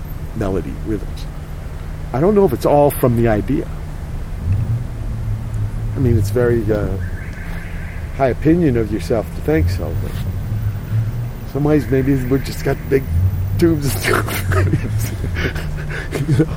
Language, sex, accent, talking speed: English, male, American, 135 wpm